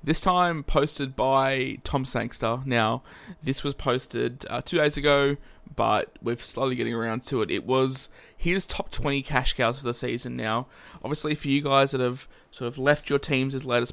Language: English